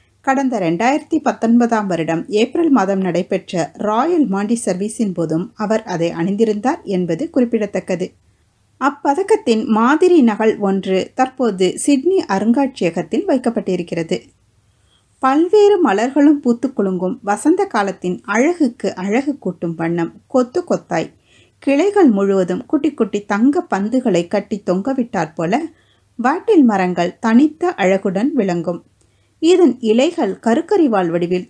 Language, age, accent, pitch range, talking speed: Tamil, 30-49, native, 185-270 Hz, 95 wpm